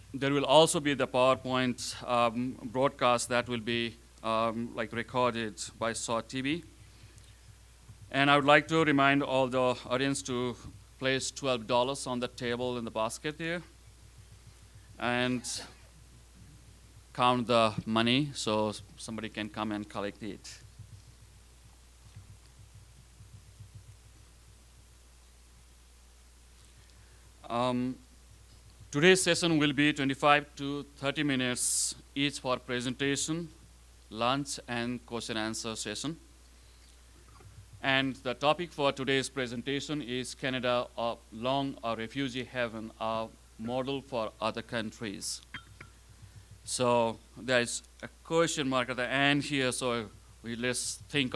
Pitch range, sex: 105-130 Hz, male